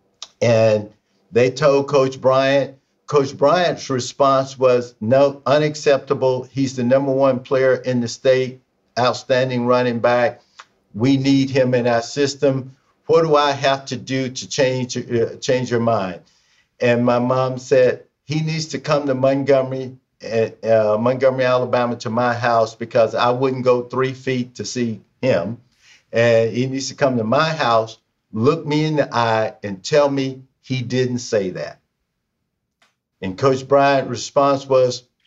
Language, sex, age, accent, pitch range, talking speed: English, male, 50-69, American, 120-135 Hz, 155 wpm